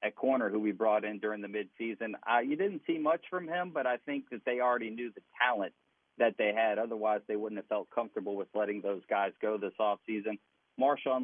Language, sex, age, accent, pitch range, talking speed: English, male, 40-59, American, 110-125 Hz, 225 wpm